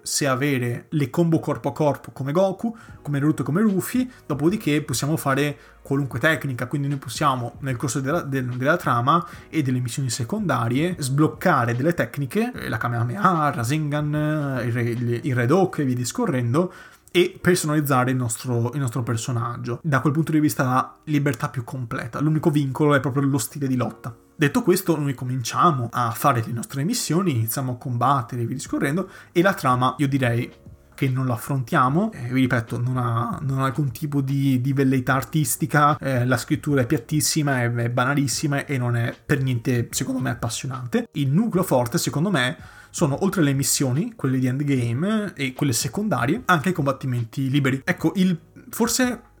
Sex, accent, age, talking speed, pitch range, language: male, native, 30-49, 175 wpm, 125-155 Hz, Italian